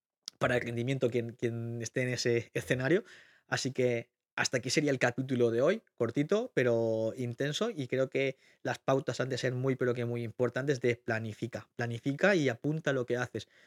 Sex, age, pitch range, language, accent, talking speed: male, 20-39, 125-145 Hz, Spanish, Spanish, 185 wpm